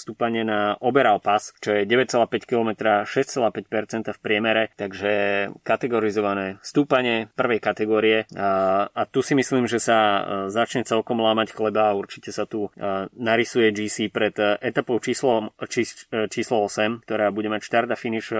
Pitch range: 105-125 Hz